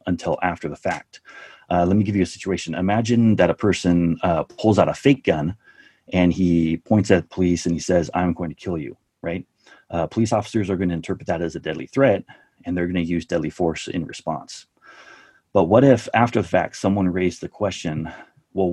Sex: male